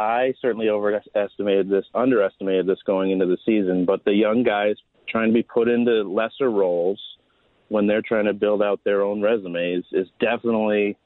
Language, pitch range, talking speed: English, 90-105 Hz, 175 wpm